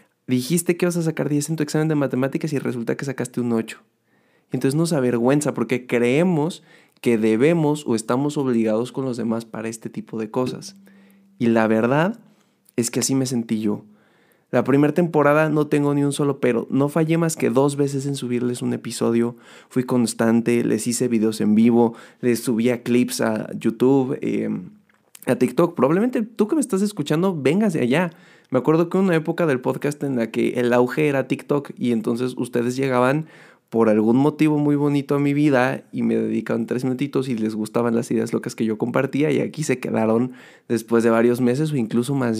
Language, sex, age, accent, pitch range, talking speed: Spanish, male, 20-39, Mexican, 115-150 Hz, 195 wpm